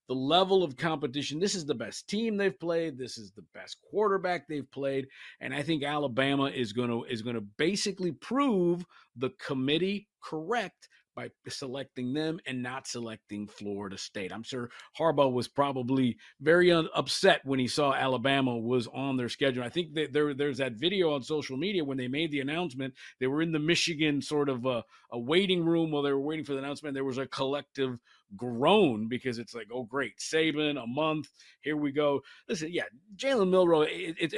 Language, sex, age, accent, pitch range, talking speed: English, male, 50-69, American, 135-170 Hz, 190 wpm